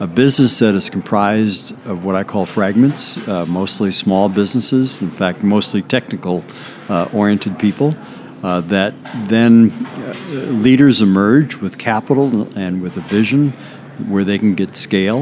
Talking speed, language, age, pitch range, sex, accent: 150 wpm, English, 60-79, 95-115 Hz, male, American